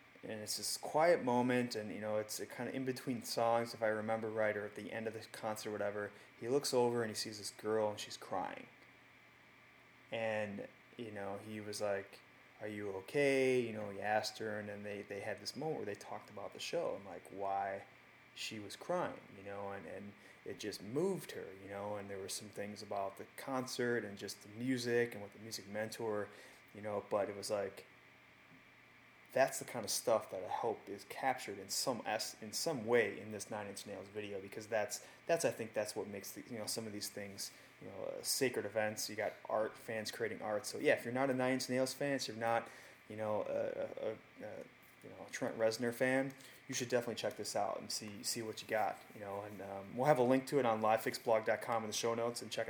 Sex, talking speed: male, 235 wpm